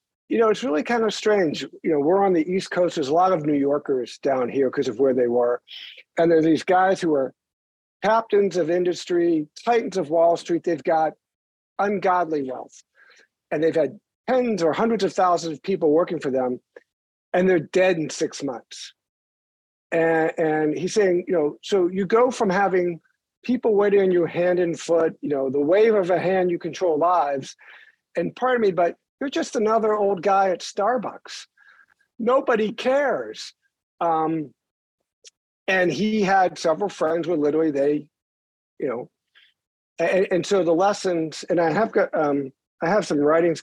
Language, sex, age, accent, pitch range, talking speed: English, male, 50-69, American, 155-205 Hz, 180 wpm